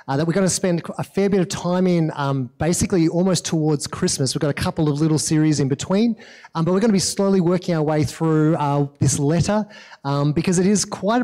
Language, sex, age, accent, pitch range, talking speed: English, male, 30-49, Australian, 140-185 Hz, 240 wpm